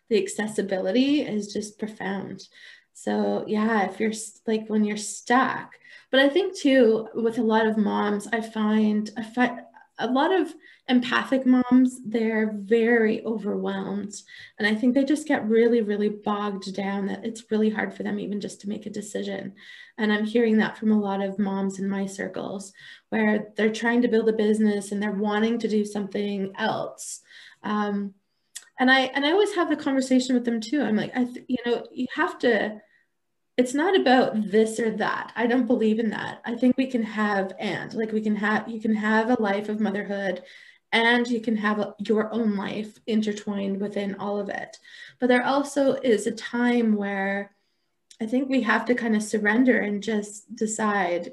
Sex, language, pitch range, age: female, English, 205-245 Hz, 20-39